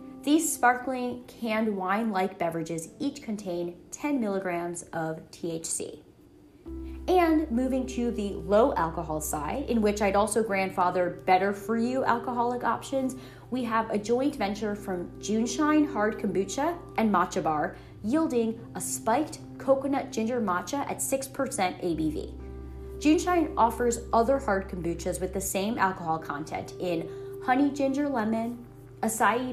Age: 30-49